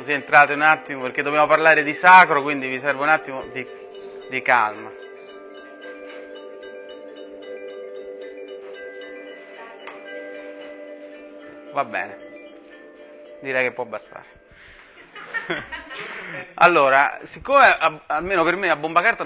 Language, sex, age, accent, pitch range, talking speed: Italian, male, 30-49, native, 120-170 Hz, 95 wpm